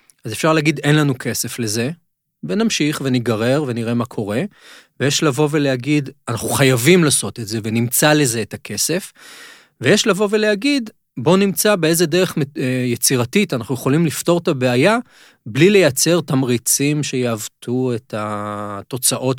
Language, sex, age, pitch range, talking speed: Hebrew, male, 30-49, 115-150 Hz, 135 wpm